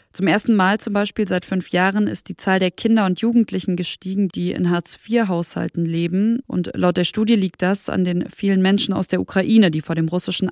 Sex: female